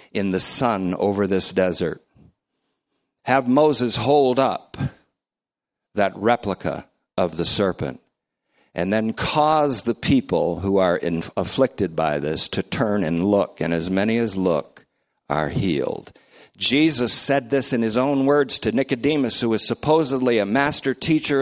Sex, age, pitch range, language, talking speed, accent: male, 50-69, 100-135 Hz, English, 145 wpm, American